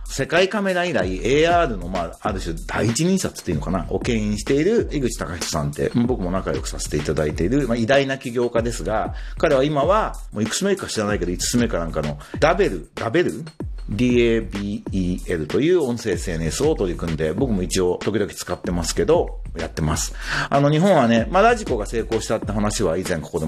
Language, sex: Japanese, male